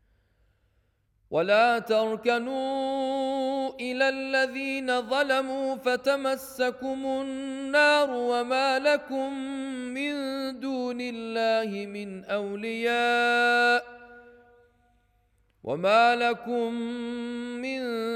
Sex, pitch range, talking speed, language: male, 225-270 Hz, 55 wpm, Spanish